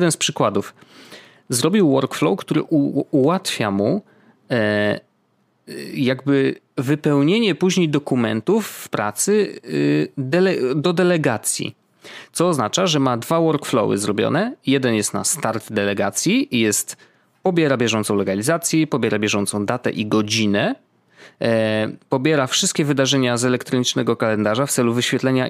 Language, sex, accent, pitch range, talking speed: Polish, male, native, 115-155 Hz, 120 wpm